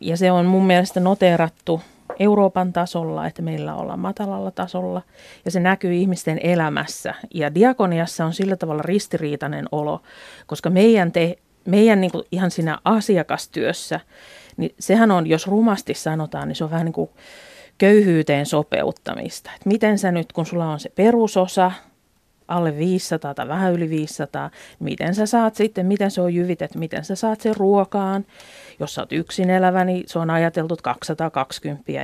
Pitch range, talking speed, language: 165-200 Hz, 160 wpm, Finnish